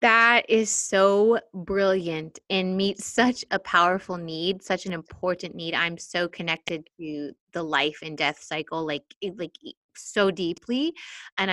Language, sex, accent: English, female, American